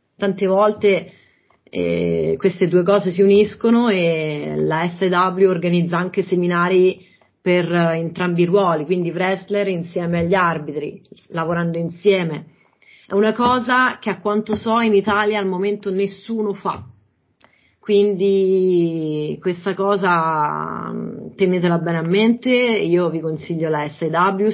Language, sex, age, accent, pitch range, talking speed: Italian, female, 30-49, native, 165-200 Hz, 125 wpm